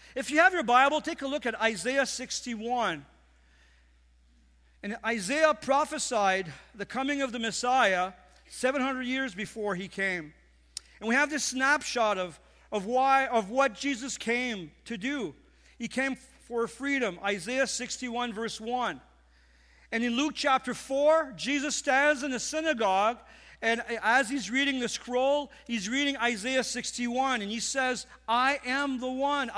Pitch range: 220-270 Hz